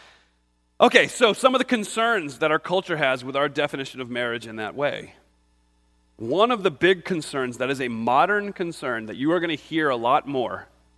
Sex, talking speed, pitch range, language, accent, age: male, 200 wpm, 110-175 Hz, English, American, 30-49